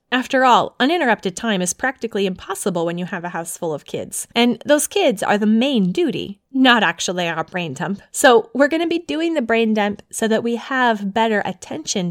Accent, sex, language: American, female, English